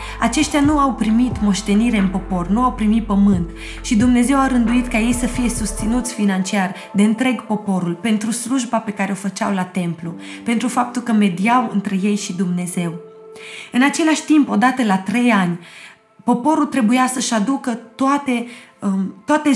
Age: 20-39